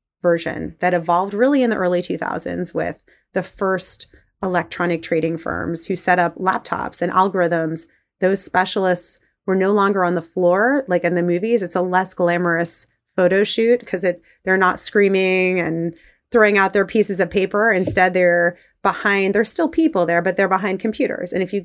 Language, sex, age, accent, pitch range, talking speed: English, female, 30-49, American, 170-195 Hz, 175 wpm